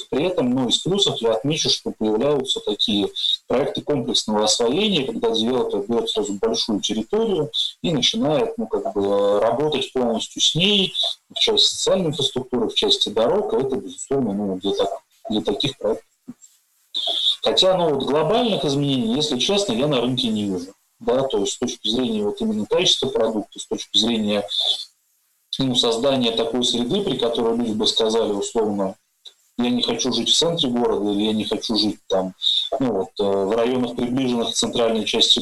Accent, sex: native, male